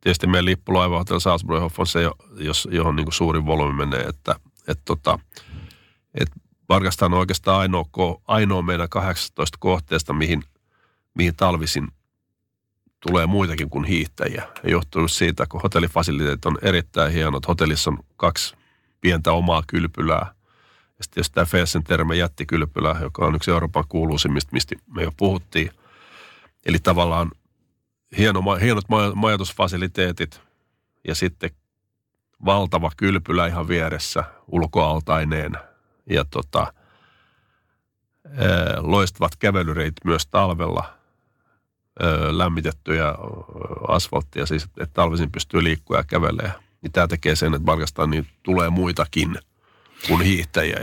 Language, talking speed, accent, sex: Finnish, 110 wpm, native, male